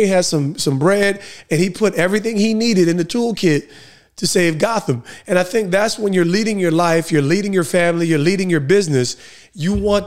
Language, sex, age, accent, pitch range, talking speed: English, male, 30-49, American, 160-200 Hz, 210 wpm